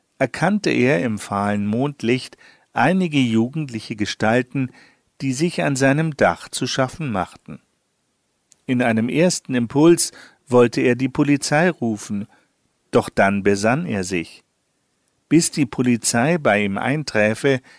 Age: 50-69